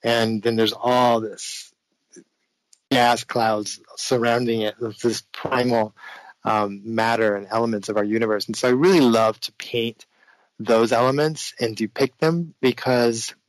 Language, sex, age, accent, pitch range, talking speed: English, male, 20-39, American, 110-125 Hz, 140 wpm